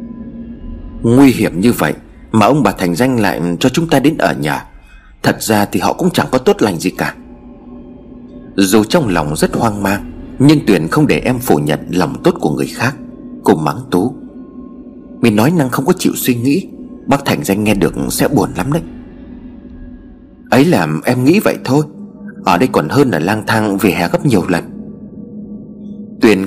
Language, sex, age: Vietnamese, male, 30-49